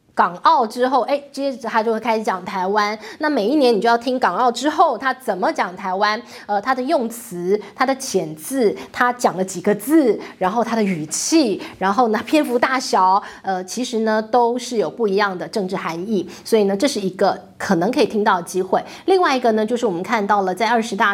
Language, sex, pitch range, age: Chinese, female, 200-265 Hz, 20-39